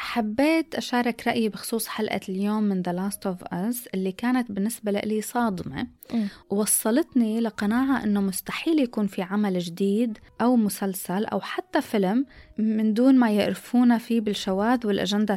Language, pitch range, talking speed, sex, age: Arabic, 200-245 Hz, 140 wpm, female, 20-39